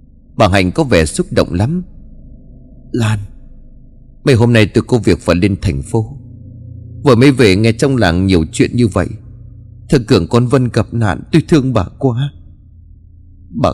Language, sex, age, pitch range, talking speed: Vietnamese, male, 30-49, 95-130 Hz, 170 wpm